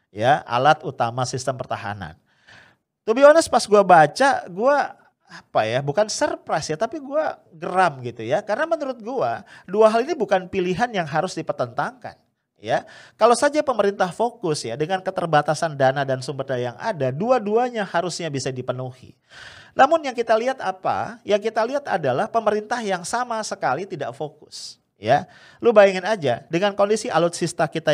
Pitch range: 155-225 Hz